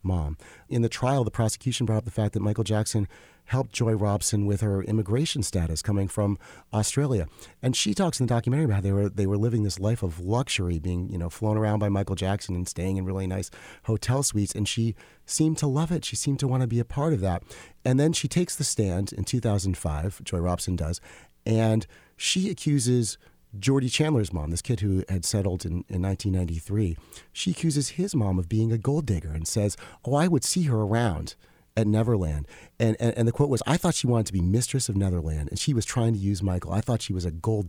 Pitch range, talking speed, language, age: 95-125 Hz, 230 wpm, English, 40-59